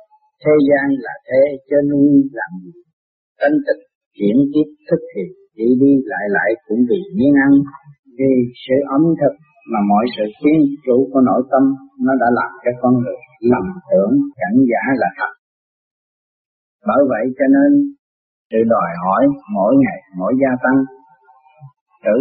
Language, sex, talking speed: Vietnamese, male, 160 wpm